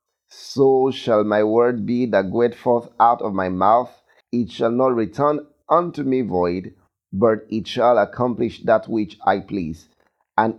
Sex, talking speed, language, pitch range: male, 160 wpm, English, 105-140 Hz